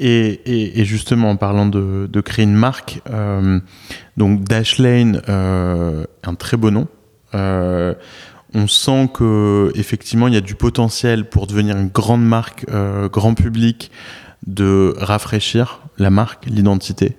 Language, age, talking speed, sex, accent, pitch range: French, 20-39, 145 wpm, male, French, 100-115 Hz